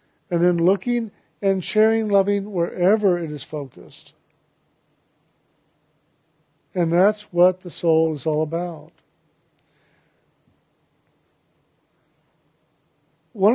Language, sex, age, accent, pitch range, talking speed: English, male, 50-69, American, 155-180 Hz, 85 wpm